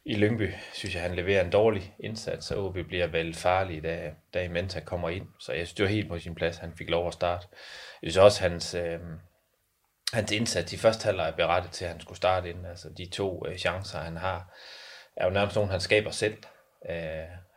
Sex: male